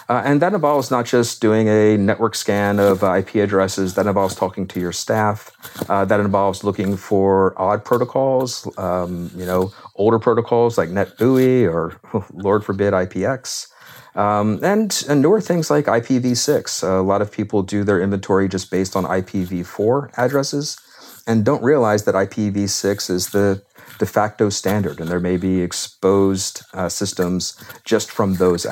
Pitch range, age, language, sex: 95-120 Hz, 40-59, English, male